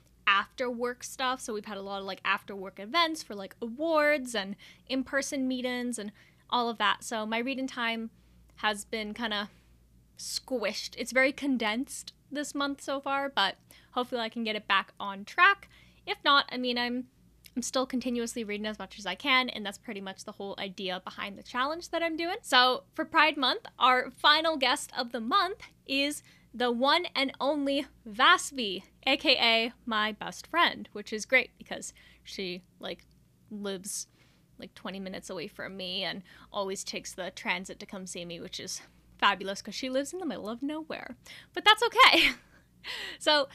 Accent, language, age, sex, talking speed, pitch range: American, English, 10-29, female, 180 wpm, 210-275 Hz